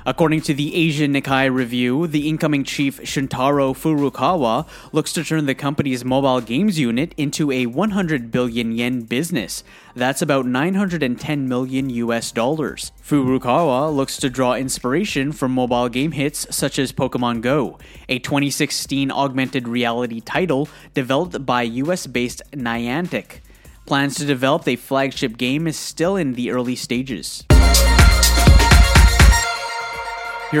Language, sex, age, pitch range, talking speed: English, male, 20-39, 125-150 Hz, 130 wpm